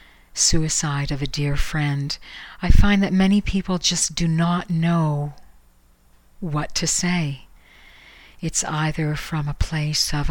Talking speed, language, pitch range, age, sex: 135 wpm, English, 140-165 Hz, 50-69, female